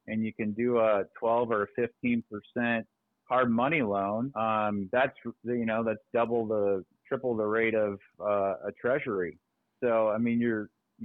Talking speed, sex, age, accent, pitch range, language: 165 wpm, male, 30-49, American, 105-125 Hz, English